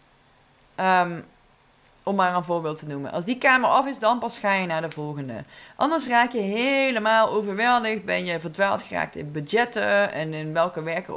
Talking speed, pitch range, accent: 185 wpm, 165-225 Hz, Dutch